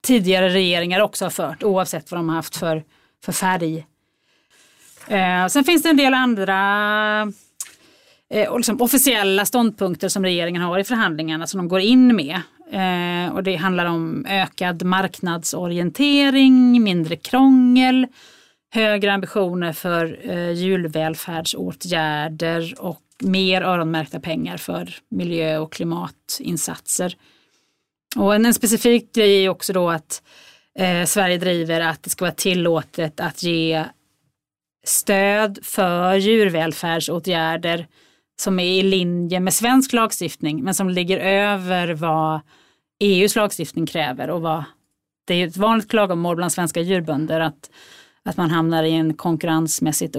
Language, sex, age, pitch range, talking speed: Swedish, female, 30-49, 165-205 Hz, 130 wpm